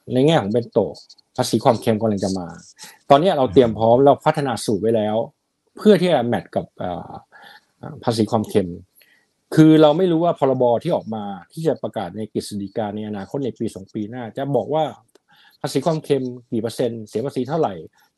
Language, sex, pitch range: Thai, male, 110-145 Hz